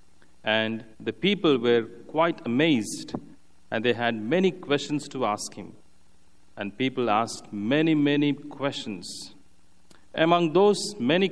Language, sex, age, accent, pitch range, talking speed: English, male, 40-59, Indian, 105-150 Hz, 120 wpm